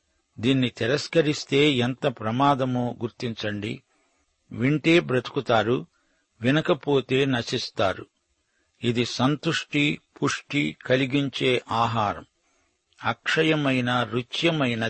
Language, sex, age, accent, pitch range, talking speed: Telugu, male, 50-69, native, 120-140 Hz, 65 wpm